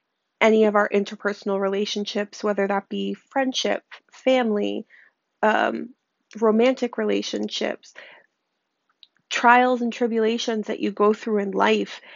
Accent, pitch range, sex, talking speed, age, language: American, 195-225 Hz, female, 110 wpm, 30-49, English